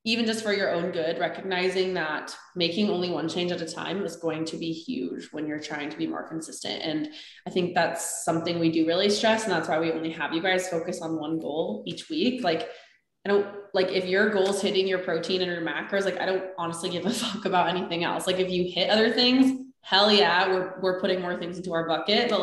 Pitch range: 170-215 Hz